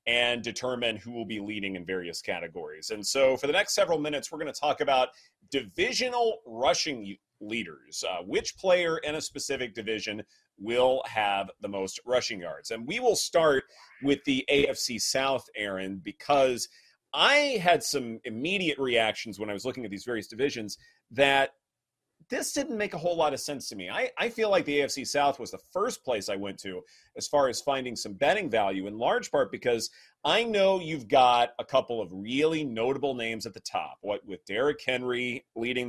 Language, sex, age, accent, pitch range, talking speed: English, male, 30-49, American, 110-150 Hz, 190 wpm